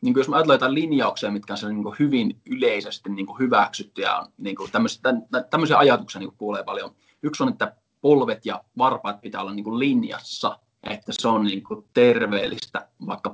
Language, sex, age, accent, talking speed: Finnish, male, 20-39, native, 140 wpm